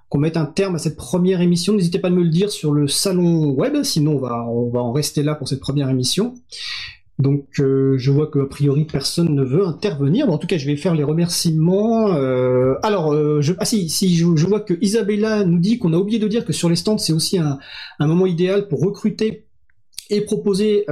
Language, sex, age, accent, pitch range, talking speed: French, male, 30-49, French, 145-195 Hz, 235 wpm